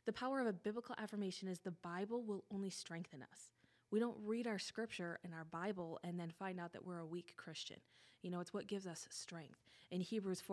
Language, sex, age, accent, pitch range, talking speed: English, female, 20-39, American, 170-225 Hz, 220 wpm